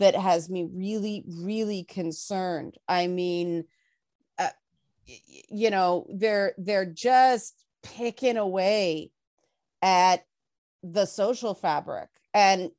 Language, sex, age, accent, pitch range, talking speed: English, female, 30-49, American, 180-220 Hz, 100 wpm